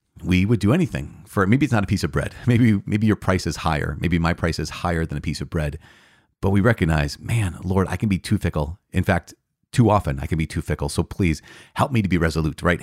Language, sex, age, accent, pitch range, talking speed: English, male, 30-49, American, 80-105 Hz, 255 wpm